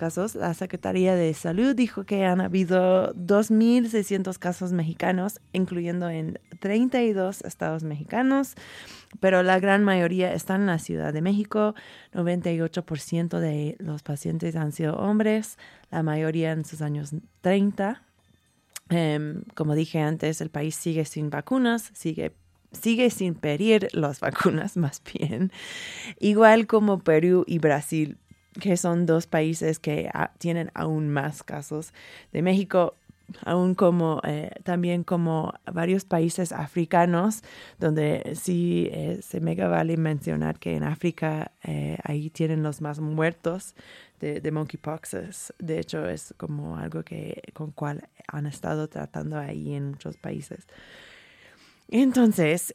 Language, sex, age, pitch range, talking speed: Spanish, female, 20-39, 155-195 Hz, 135 wpm